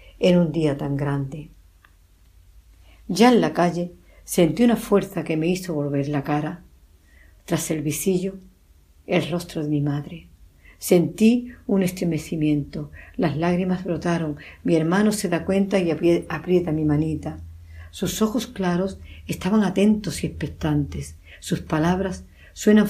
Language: Spanish